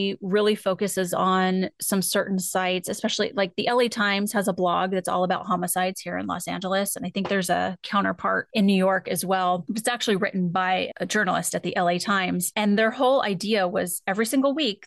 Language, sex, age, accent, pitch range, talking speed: English, female, 30-49, American, 185-220 Hz, 205 wpm